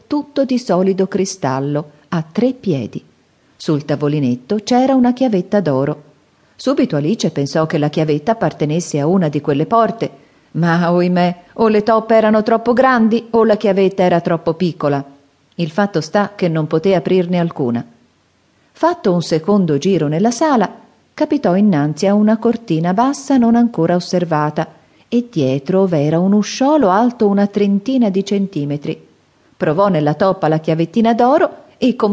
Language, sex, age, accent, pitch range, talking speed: Italian, female, 40-59, native, 160-220 Hz, 150 wpm